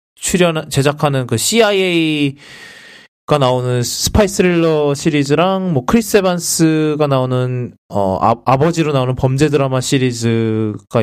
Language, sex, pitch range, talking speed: English, male, 120-175 Hz, 105 wpm